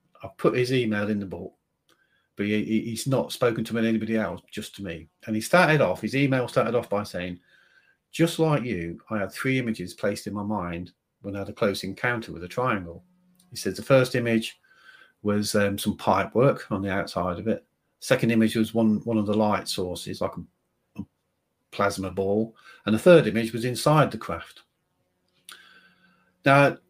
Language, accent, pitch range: English, British, 100-135 Hz